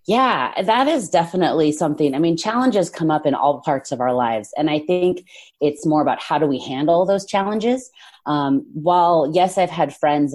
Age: 30-49